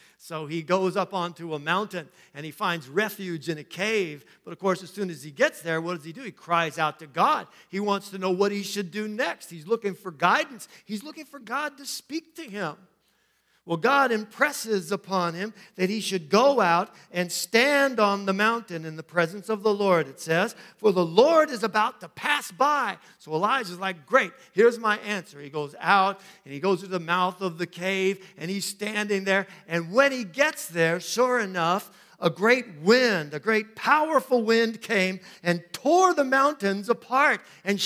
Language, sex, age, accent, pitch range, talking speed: English, male, 50-69, American, 175-235 Hz, 205 wpm